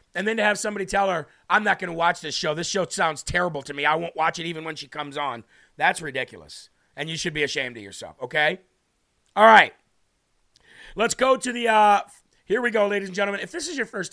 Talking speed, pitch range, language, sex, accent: 240 wpm, 175-210 Hz, English, male, American